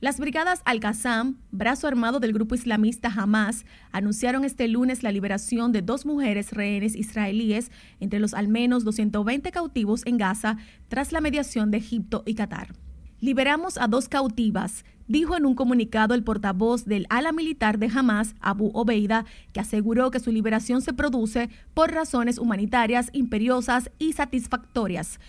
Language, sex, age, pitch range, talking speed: Spanish, female, 30-49, 220-265 Hz, 155 wpm